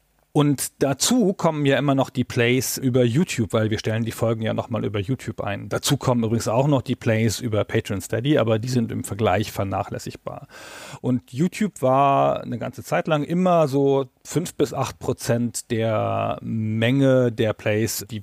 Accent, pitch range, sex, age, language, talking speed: German, 110-140 Hz, male, 40-59, German, 180 wpm